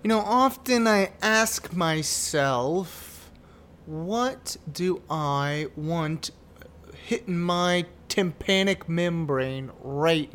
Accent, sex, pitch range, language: American, male, 145-210 Hz, English